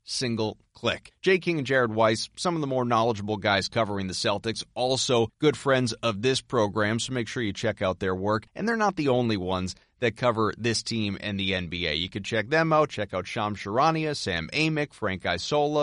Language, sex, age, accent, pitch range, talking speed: English, male, 30-49, American, 105-145 Hz, 210 wpm